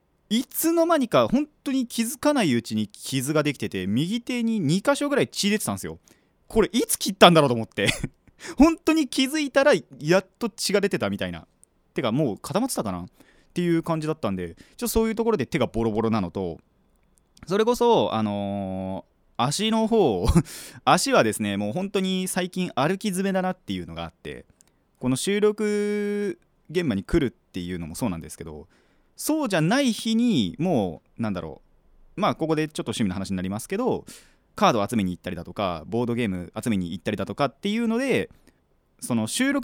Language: Japanese